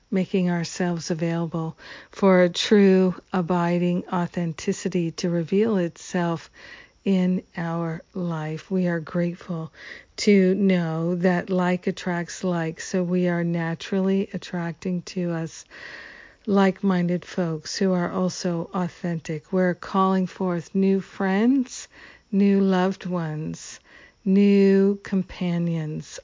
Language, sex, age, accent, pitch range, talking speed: English, female, 60-79, American, 170-195 Hz, 105 wpm